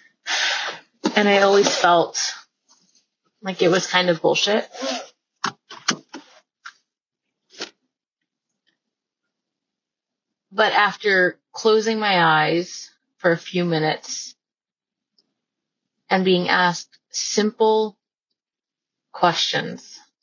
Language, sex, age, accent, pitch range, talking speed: English, female, 30-49, American, 160-195 Hz, 70 wpm